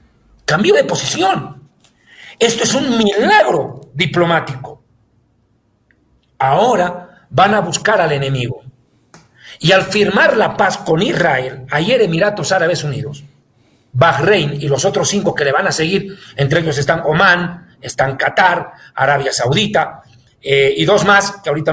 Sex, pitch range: male, 135-190 Hz